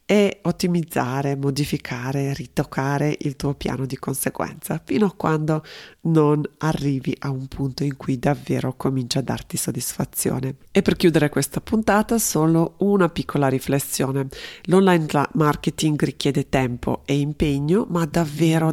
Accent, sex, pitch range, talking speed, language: native, female, 135-170 Hz, 130 wpm, Italian